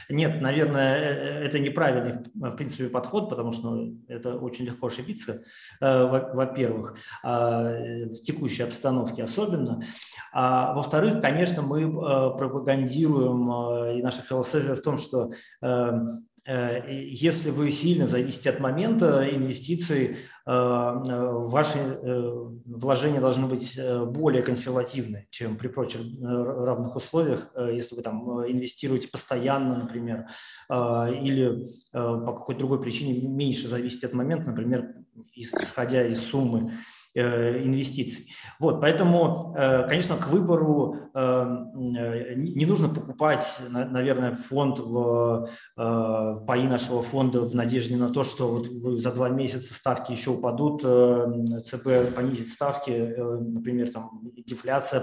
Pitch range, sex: 120-135 Hz, male